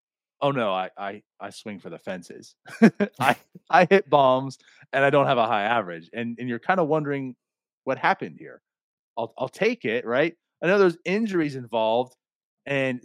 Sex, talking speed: male, 185 wpm